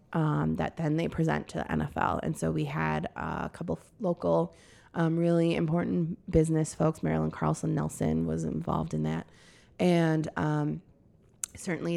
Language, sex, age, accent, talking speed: English, female, 20-39, American, 160 wpm